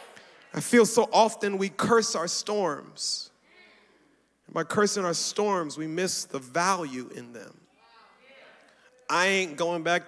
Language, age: English, 30-49